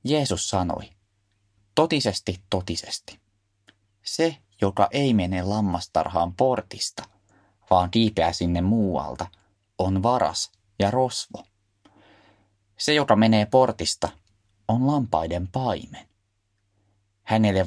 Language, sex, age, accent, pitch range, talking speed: Finnish, male, 20-39, native, 95-105 Hz, 90 wpm